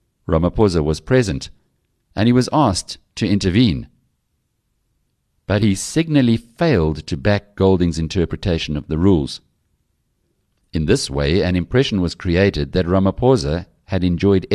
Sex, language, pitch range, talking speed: male, English, 75-100 Hz, 130 wpm